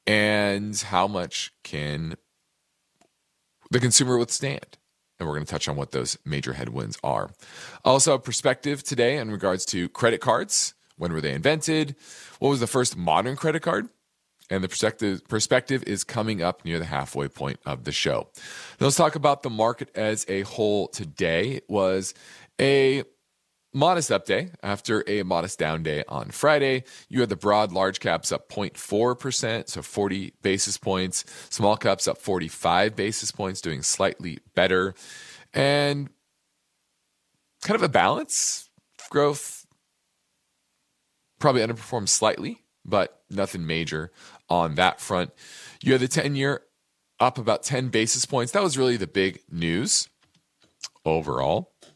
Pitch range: 95-130 Hz